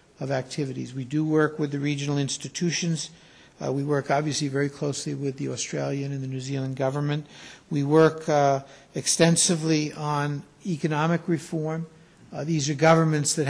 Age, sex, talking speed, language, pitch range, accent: 60-79, male, 155 wpm, English, 130-160 Hz, American